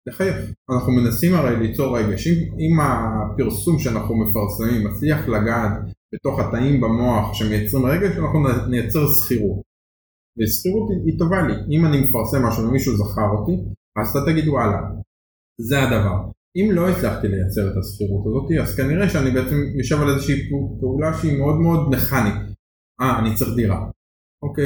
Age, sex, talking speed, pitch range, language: 20-39, male, 155 wpm, 105-140 Hz, Hebrew